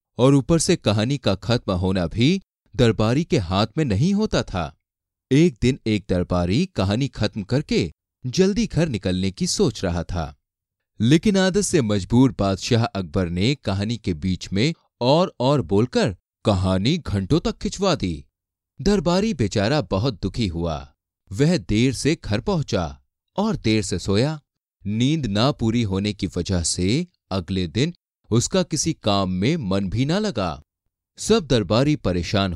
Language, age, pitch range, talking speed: Hindi, 30-49, 95-145 Hz, 150 wpm